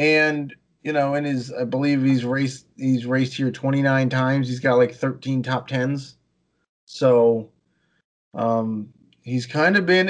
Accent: American